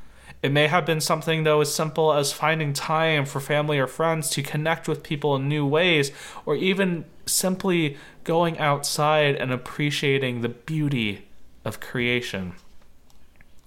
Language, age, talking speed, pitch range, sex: English, 20-39, 145 wpm, 125-160 Hz, male